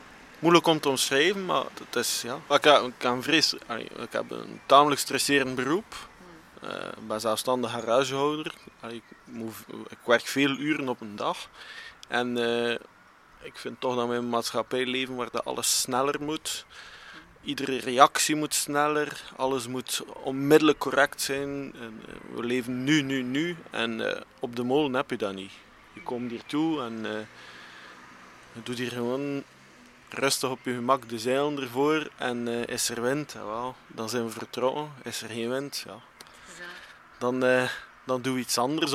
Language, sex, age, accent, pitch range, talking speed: Dutch, male, 20-39, Dutch, 120-150 Hz, 175 wpm